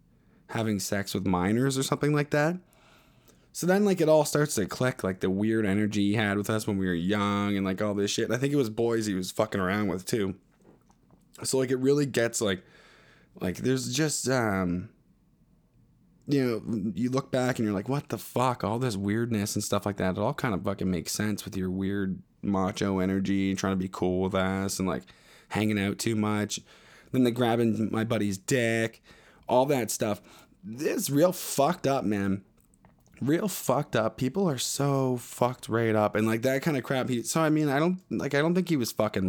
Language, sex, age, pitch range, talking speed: English, male, 20-39, 95-130 Hz, 215 wpm